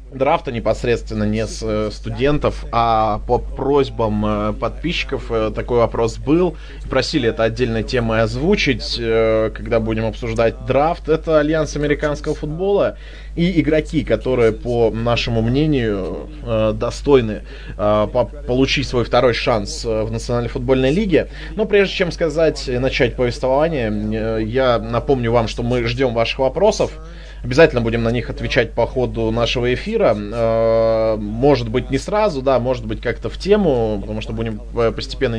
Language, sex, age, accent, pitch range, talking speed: Russian, male, 20-39, native, 110-135 Hz, 130 wpm